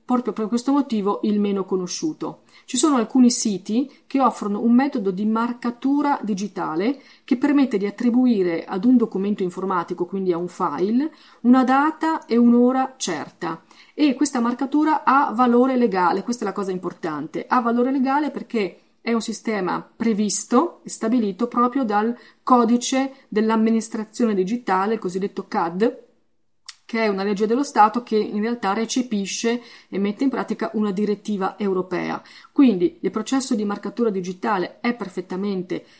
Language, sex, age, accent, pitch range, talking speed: Italian, female, 30-49, native, 195-245 Hz, 150 wpm